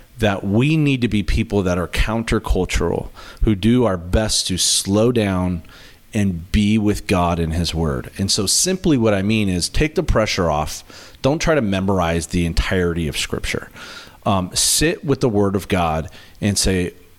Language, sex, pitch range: English, male, 85-110 Hz